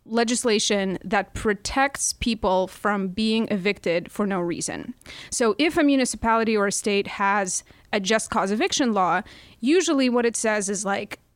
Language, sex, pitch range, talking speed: English, female, 200-245 Hz, 155 wpm